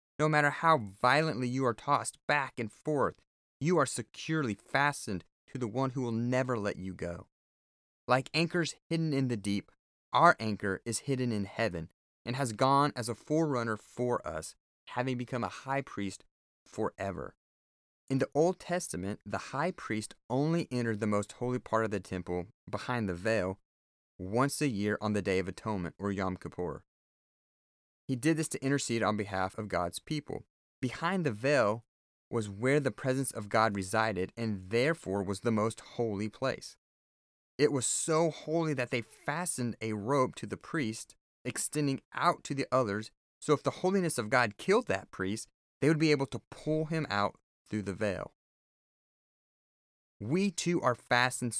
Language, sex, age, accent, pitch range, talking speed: English, male, 30-49, American, 100-145 Hz, 170 wpm